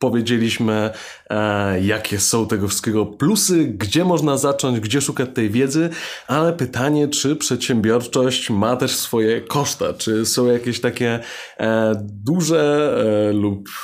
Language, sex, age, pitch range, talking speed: Polish, male, 20-39, 105-130 Hz, 130 wpm